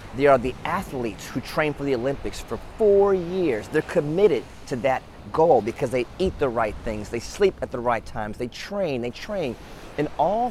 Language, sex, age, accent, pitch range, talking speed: English, male, 30-49, American, 110-170 Hz, 200 wpm